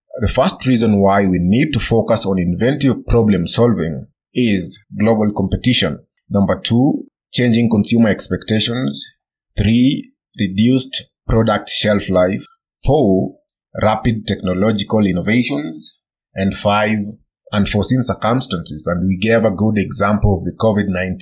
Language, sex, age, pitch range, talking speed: English, male, 30-49, 95-120 Hz, 120 wpm